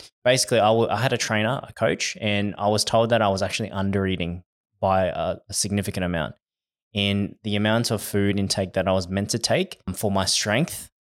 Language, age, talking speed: English, 20-39, 205 wpm